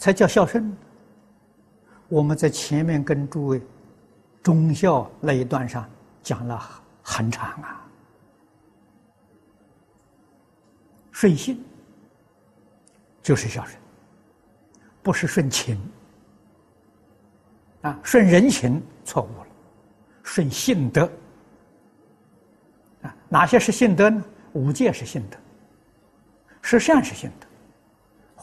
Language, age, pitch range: Chinese, 60-79, 110-185 Hz